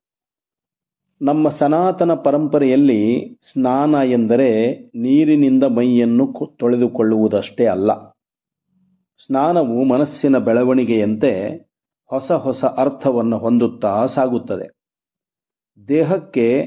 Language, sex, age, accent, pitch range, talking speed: Kannada, male, 50-69, native, 115-150 Hz, 65 wpm